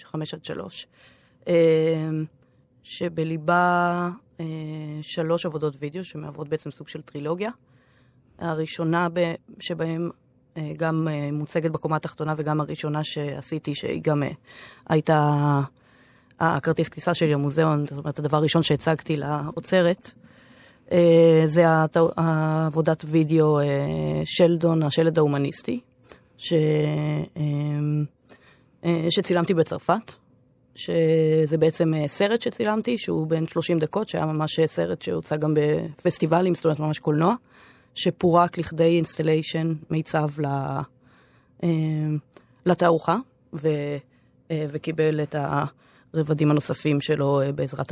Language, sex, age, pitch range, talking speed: Hebrew, female, 20-39, 150-165 Hz, 90 wpm